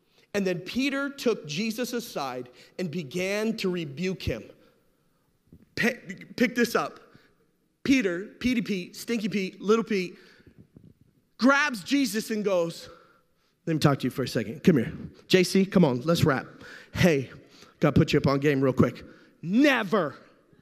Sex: male